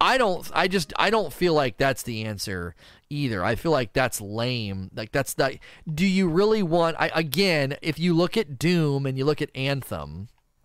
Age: 30-49